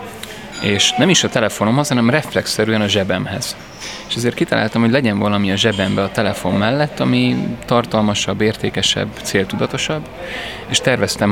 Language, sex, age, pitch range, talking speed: Hungarian, male, 30-49, 100-115 Hz, 140 wpm